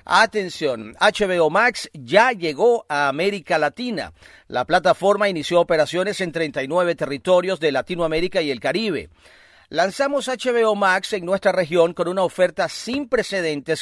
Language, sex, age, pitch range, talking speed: Spanish, male, 40-59, 160-205 Hz, 135 wpm